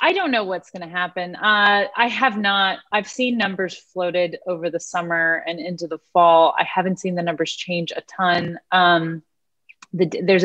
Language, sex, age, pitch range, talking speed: English, female, 30-49, 155-180 Hz, 180 wpm